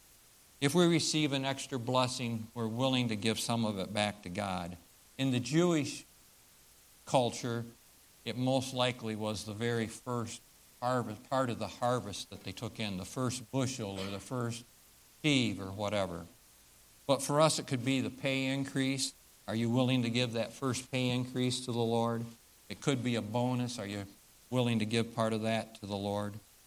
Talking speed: 185 wpm